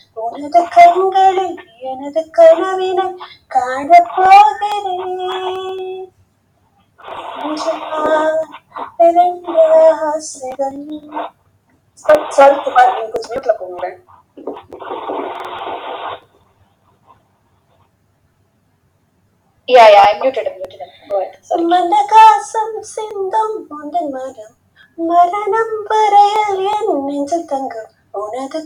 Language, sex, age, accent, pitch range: Tamil, female, 30-49, native, 270-360 Hz